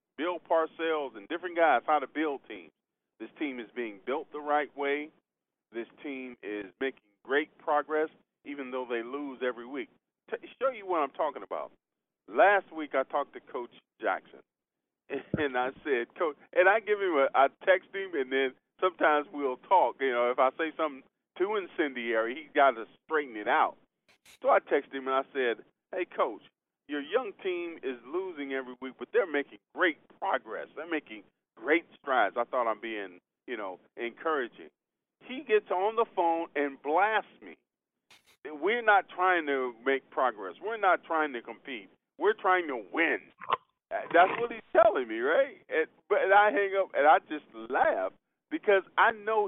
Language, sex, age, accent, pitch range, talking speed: English, male, 40-59, American, 135-210 Hz, 180 wpm